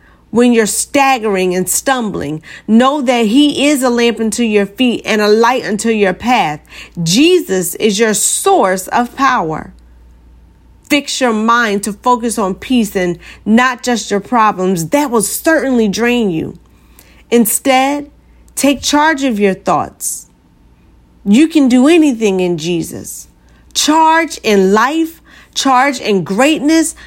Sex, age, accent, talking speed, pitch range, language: female, 40-59, American, 135 wpm, 165-255 Hz, English